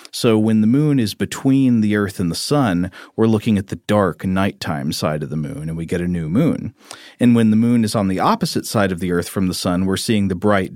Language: English